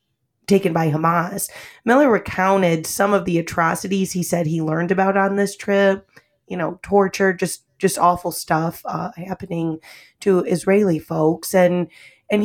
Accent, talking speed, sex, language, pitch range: American, 150 wpm, female, English, 165-200 Hz